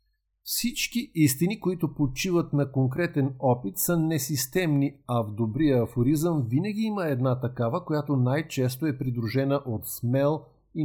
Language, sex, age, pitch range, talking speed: Bulgarian, male, 50-69, 125-160 Hz, 135 wpm